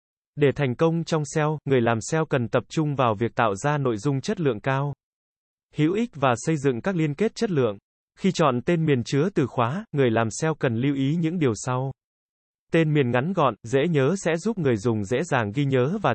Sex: male